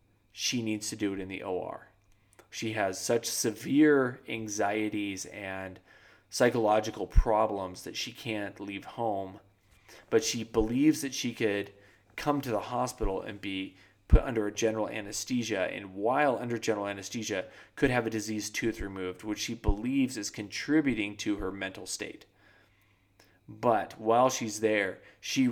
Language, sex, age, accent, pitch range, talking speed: English, male, 20-39, American, 100-115 Hz, 150 wpm